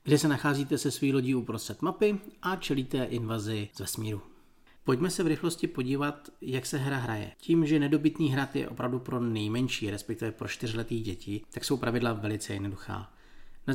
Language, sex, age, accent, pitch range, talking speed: Czech, male, 40-59, native, 115-150 Hz, 175 wpm